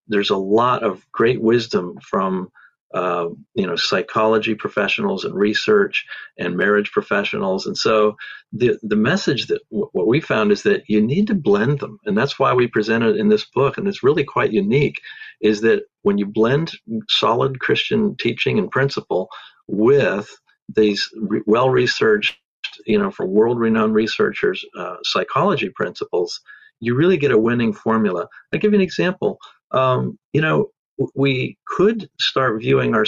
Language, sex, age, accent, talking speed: English, male, 50-69, American, 155 wpm